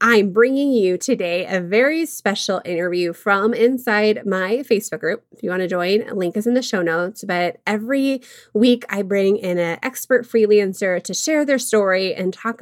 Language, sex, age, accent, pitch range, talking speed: English, female, 20-39, American, 175-240 Hz, 190 wpm